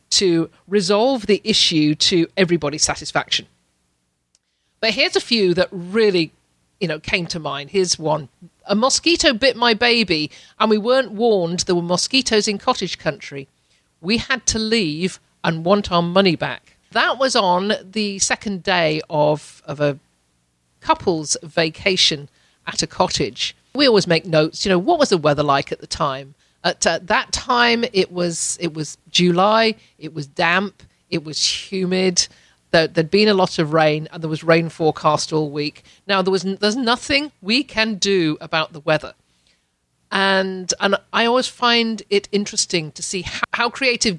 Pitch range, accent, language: 155-215 Hz, British, English